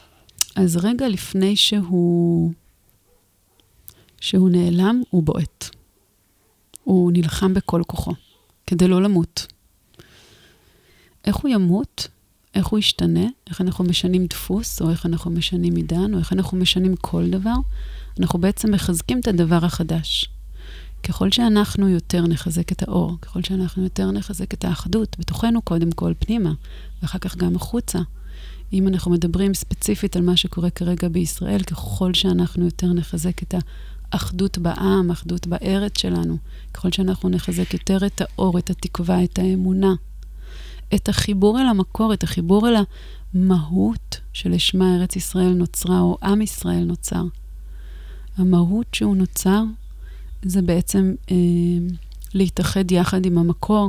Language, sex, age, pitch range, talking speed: Hebrew, female, 30-49, 170-190 Hz, 130 wpm